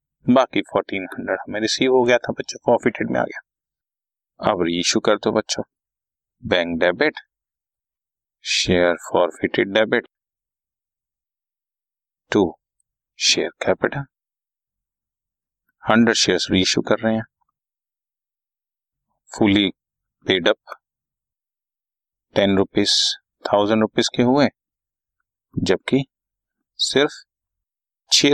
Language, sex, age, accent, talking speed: Hindi, male, 30-49, native, 80 wpm